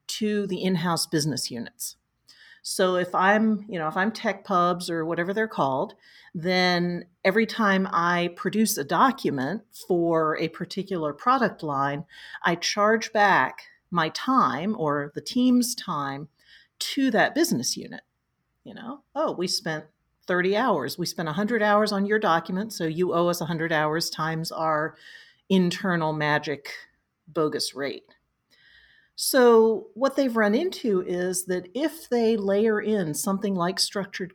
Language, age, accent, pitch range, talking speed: English, 40-59, American, 170-225 Hz, 145 wpm